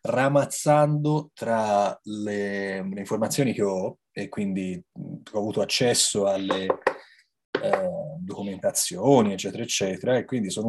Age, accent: 30-49, native